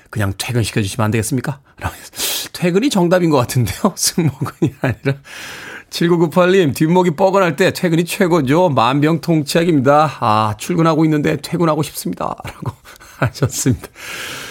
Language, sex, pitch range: Korean, male, 115-160 Hz